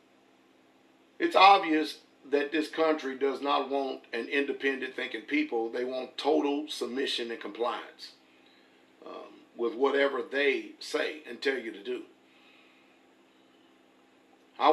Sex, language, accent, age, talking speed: male, English, American, 40-59, 120 wpm